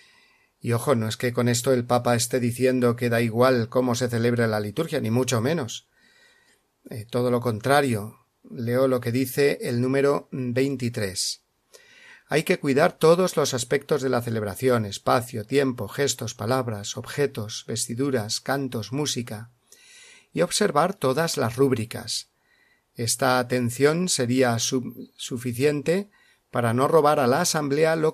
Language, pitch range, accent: Spanish, 120-145 Hz, Spanish